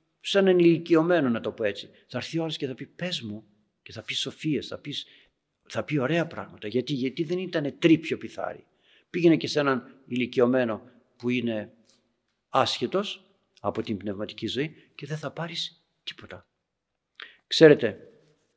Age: 50-69